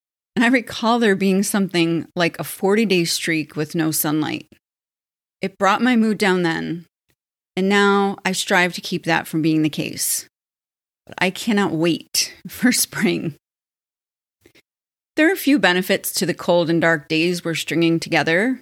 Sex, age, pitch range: female, 30-49, 165-210 Hz